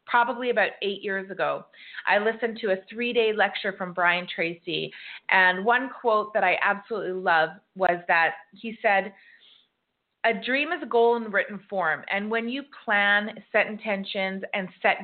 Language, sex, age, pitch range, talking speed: English, female, 30-49, 190-240 Hz, 170 wpm